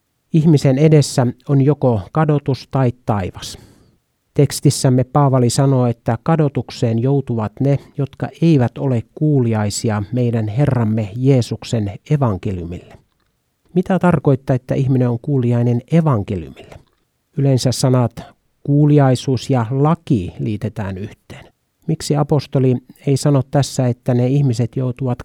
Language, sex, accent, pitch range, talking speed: Finnish, male, native, 115-140 Hz, 105 wpm